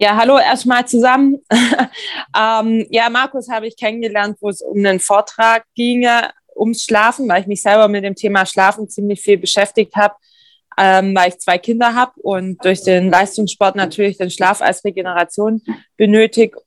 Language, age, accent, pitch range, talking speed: German, 20-39, German, 180-215 Hz, 165 wpm